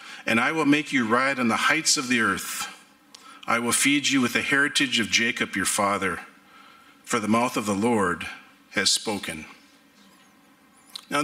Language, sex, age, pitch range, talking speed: English, male, 50-69, 225-265 Hz, 170 wpm